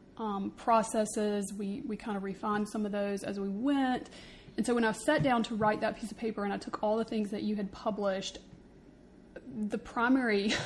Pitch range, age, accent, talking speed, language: 200-225 Hz, 30-49, American, 210 wpm, English